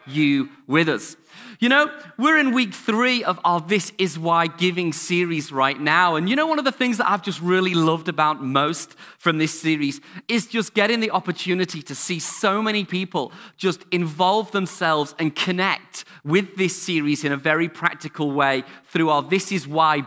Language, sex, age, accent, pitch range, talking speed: English, male, 30-49, British, 155-190 Hz, 190 wpm